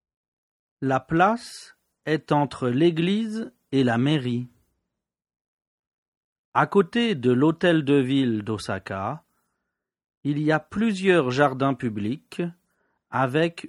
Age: 40-59